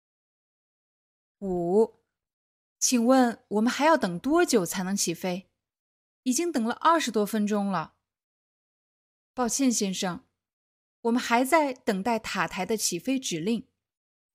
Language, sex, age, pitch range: Chinese, female, 20-39, 195-275 Hz